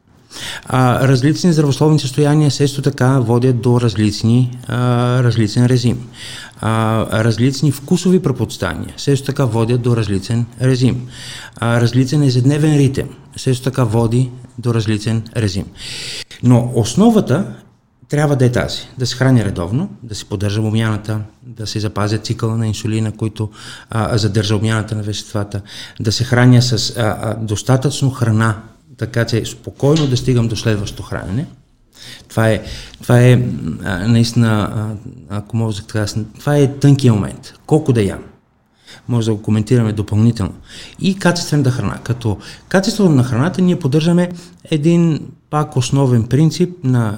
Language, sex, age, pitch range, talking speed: Bulgarian, male, 50-69, 110-135 Hz, 135 wpm